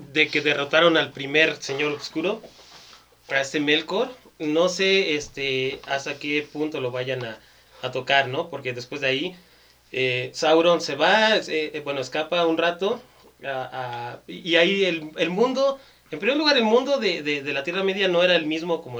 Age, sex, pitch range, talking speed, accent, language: 30-49, male, 125-160 Hz, 185 wpm, Mexican, Spanish